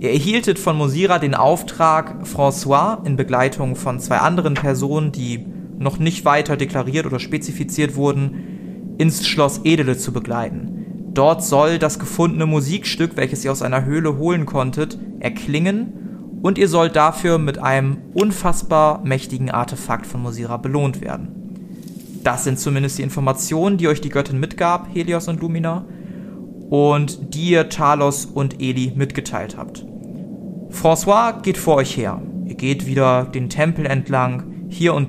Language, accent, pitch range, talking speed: German, German, 140-200 Hz, 145 wpm